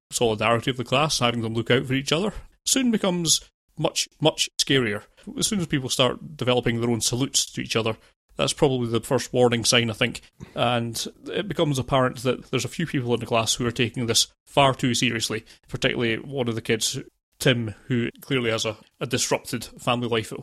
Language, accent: English, British